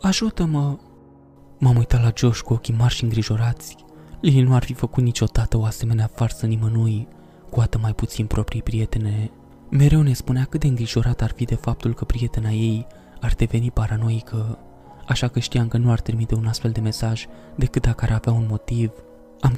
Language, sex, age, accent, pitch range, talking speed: Romanian, male, 20-39, native, 110-120 Hz, 185 wpm